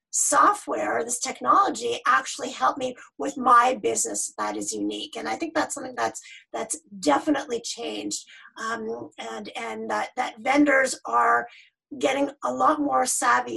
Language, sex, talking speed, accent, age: English, female, 145 wpm, American, 40-59